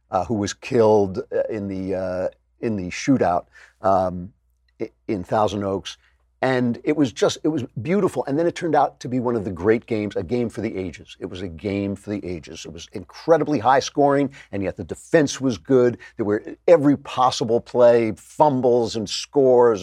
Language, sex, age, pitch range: English, male, 50-69, 100-125 Hz